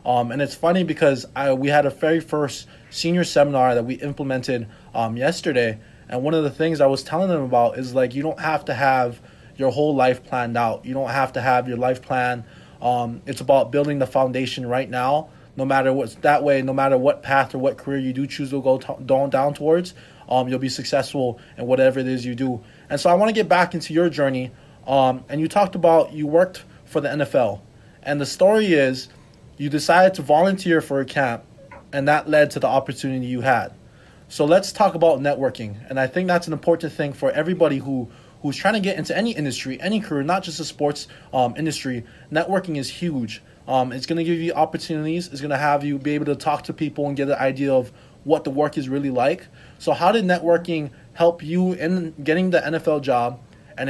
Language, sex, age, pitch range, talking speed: English, male, 20-39, 130-155 Hz, 220 wpm